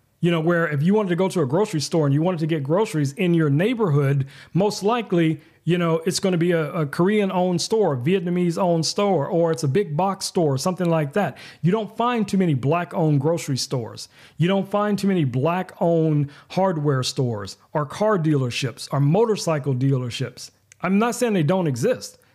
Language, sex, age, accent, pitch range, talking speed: English, male, 40-59, American, 130-180 Hz, 205 wpm